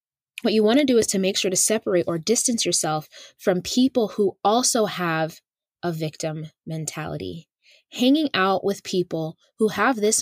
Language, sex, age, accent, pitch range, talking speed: English, female, 20-39, American, 170-215 Hz, 170 wpm